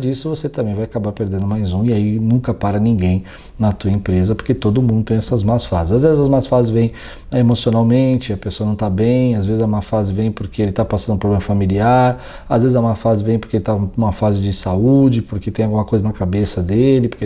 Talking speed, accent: 245 wpm, Brazilian